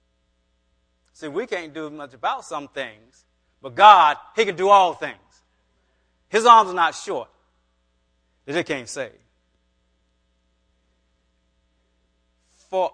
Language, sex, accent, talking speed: English, male, American, 110 wpm